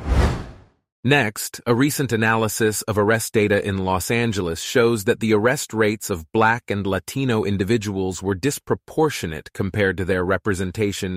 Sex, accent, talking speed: male, American, 140 wpm